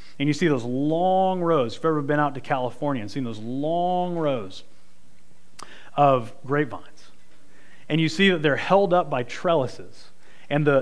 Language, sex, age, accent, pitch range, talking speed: English, male, 30-49, American, 125-165 Hz, 170 wpm